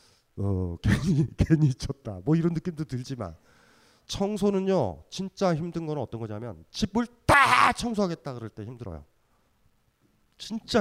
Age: 30-49